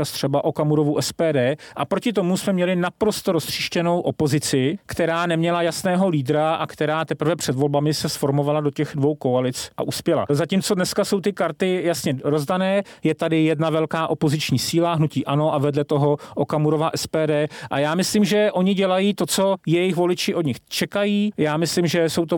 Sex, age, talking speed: male, 40-59, 175 wpm